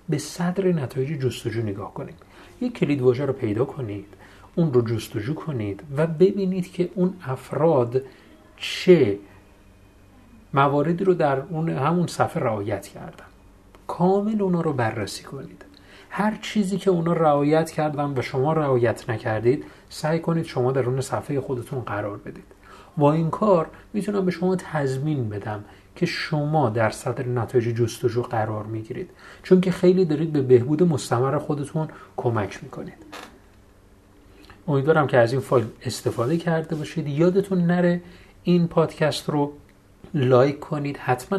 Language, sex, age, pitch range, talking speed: Persian, male, 40-59, 120-165 Hz, 140 wpm